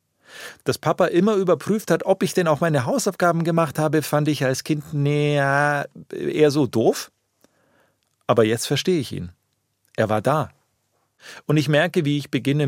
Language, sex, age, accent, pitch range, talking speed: German, male, 40-59, German, 110-150 Hz, 170 wpm